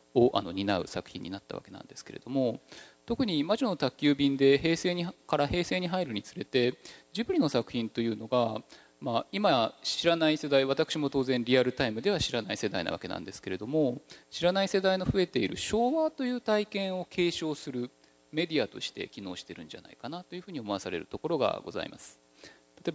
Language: Japanese